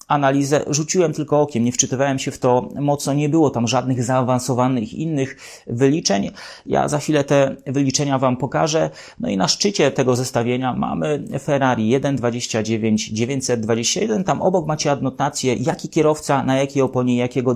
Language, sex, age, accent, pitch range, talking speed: English, male, 30-49, Polish, 125-150 Hz, 145 wpm